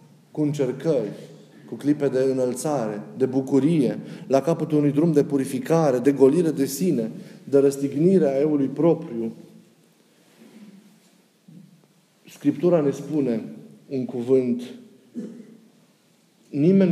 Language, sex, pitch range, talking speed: Romanian, male, 120-170 Hz, 100 wpm